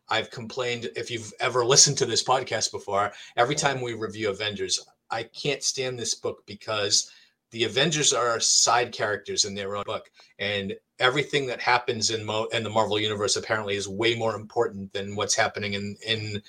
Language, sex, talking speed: English, male, 185 wpm